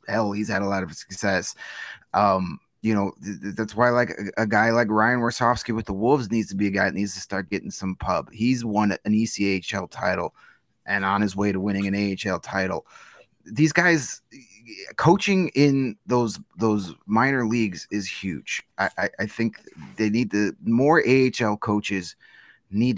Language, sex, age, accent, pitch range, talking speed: English, male, 30-49, American, 105-140 Hz, 180 wpm